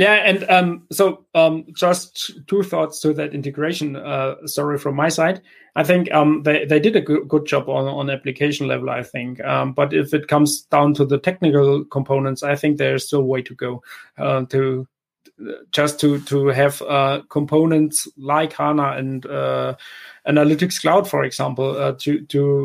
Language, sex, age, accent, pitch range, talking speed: English, male, 30-49, German, 140-155 Hz, 180 wpm